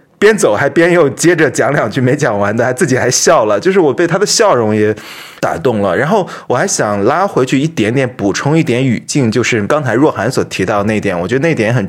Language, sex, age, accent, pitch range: Chinese, male, 20-39, native, 110-160 Hz